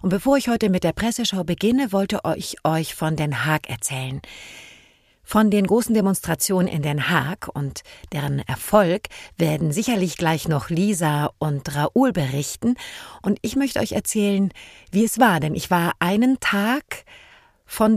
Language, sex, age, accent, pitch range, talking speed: German, female, 50-69, German, 155-220 Hz, 155 wpm